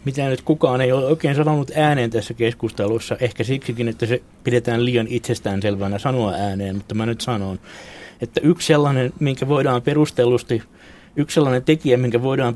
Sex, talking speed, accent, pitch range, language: male, 160 wpm, native, 105-125 Hz, Finnish